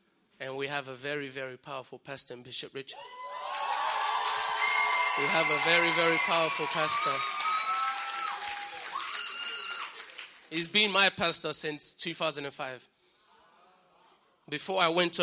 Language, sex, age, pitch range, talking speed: English, male, 20-39, 145-175 Hz, 110 wpm